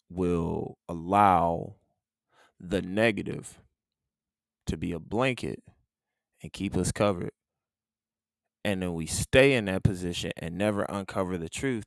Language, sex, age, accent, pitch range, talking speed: English, male, 20-39, American, 90-115 Hz, 120 wpm